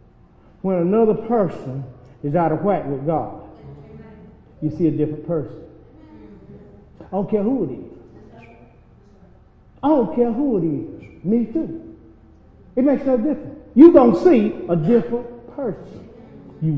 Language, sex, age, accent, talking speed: English, male, 40-59, American, 145 wpm